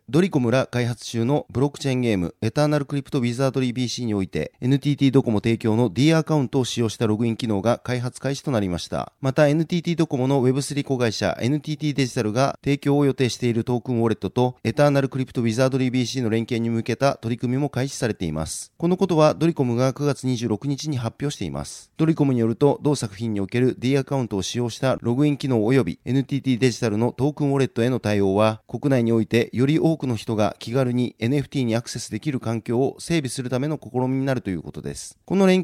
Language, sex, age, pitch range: Japanese, male, 30-49, 115-145 Hz